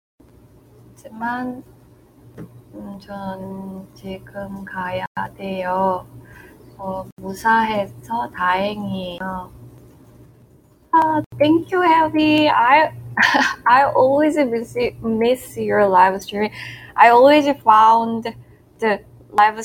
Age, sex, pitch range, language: 20-39, female, 190-245 Hz, English